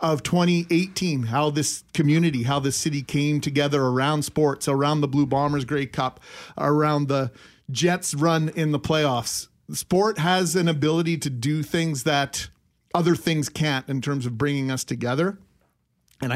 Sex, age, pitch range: male, 40-59, 140-170 Hz